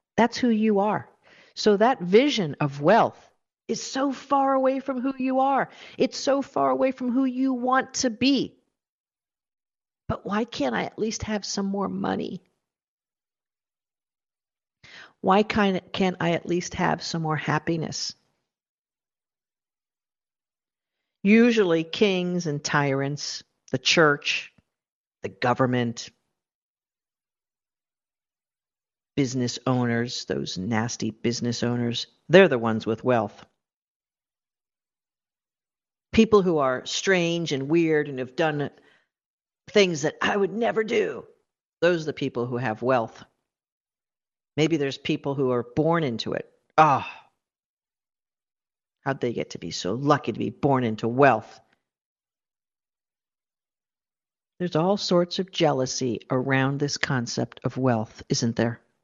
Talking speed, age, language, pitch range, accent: 120 wpm, 50-69, English, 130-210 Hz, American